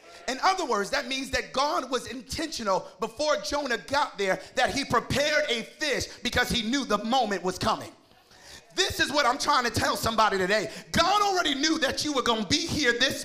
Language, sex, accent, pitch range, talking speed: English, male, American, 215-300 Hz, 205 wpm